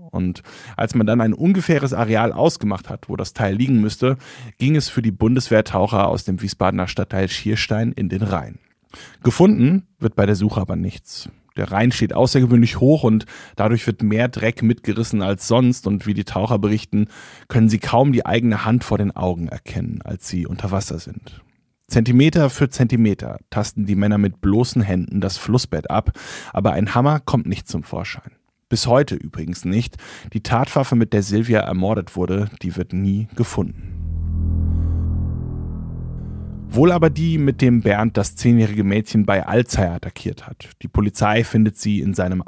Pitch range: 100-120 Hz